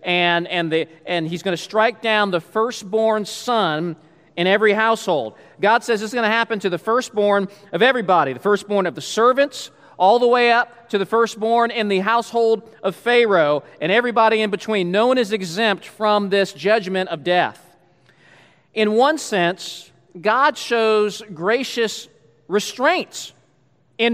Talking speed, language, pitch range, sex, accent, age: 160 wpm, English, 180-235 Hz, male, American, 40-59